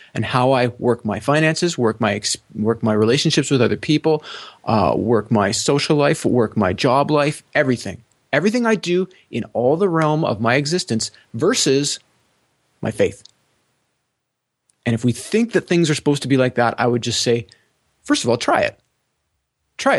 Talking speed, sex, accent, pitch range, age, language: 180 wpm, male, American, 120-175 Hz, 30-49, English